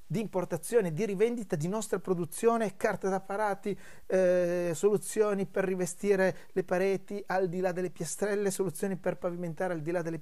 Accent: native